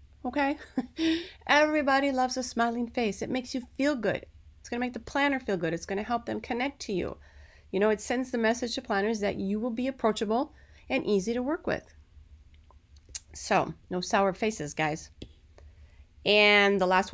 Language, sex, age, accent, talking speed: English, female, 30-49, American, 185 wpm